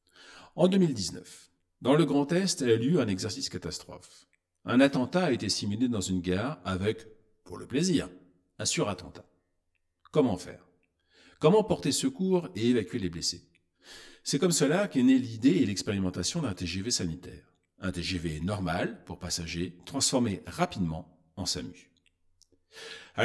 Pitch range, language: 90-135 Hz, French